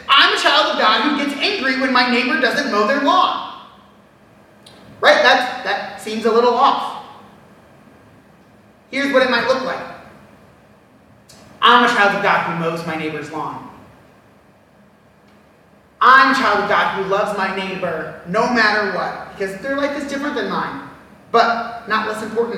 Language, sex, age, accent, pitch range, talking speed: English, male, 30-49, American, 210-270 Hz, 160 wpm